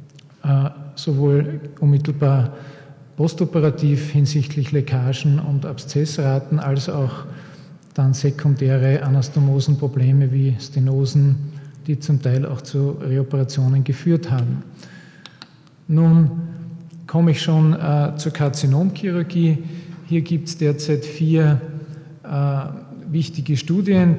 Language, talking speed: German, 85 wpm